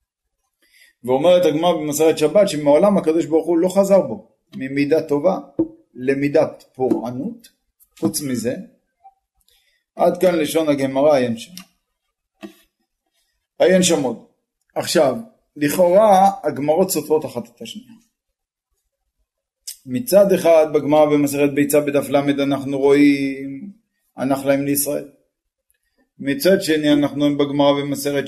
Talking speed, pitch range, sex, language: 100 wpm, 135-175 Hz, male, Hebrew